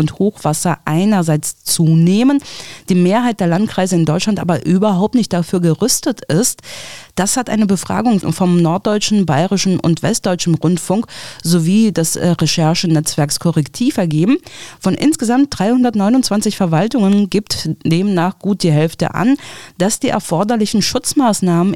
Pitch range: 160-205 Hz